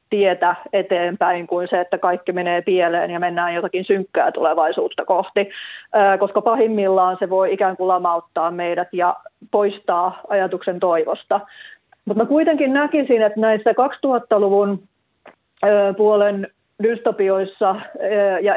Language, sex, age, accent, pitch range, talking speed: Finnish, female, 30-49, native, 180-205 Hz, 115 wpm